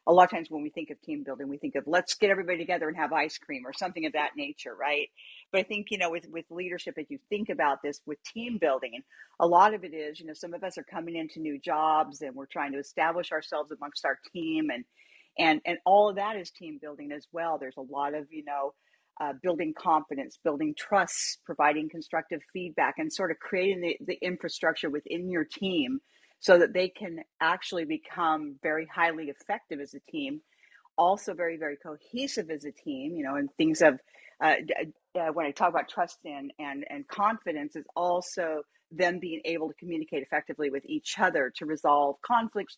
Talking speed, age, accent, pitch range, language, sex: 210 wpm, 50-69, American, 150-200 Hz, English, female